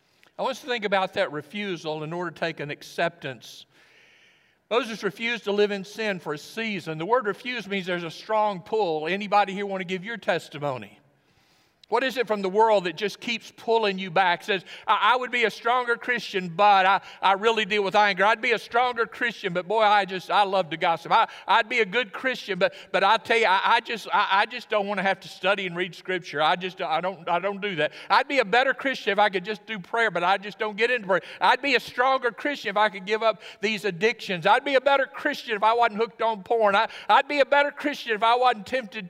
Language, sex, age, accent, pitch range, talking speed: English, male, 50-69, American, 195-245 Hz, 250 wpm